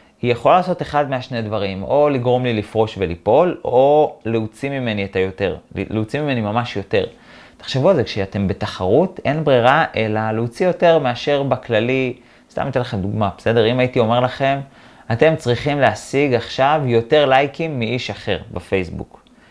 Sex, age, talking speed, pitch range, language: male, 30-49, 155 wpm, 110-145 Hz, Hebrew